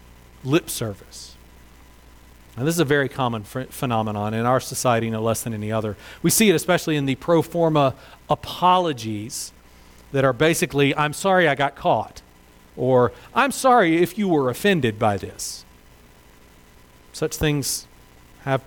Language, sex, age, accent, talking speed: English, male, 40-59, American, 150 wpm